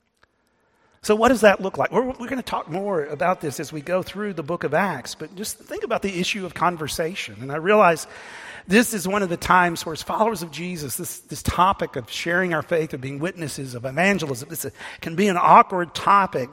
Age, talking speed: 50-69, 225 wpm